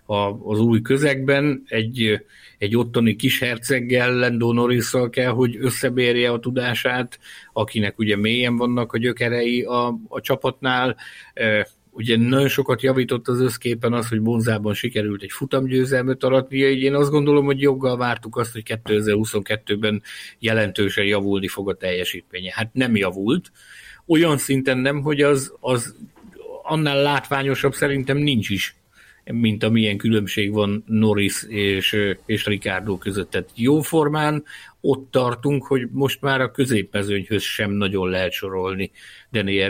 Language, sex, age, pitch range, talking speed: Hungarian, male, 50-69, 105-130 Hz, 135 wpm